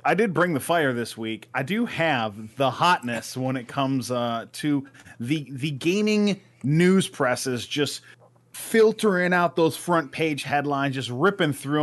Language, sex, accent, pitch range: English, male, American, 125-180 Hz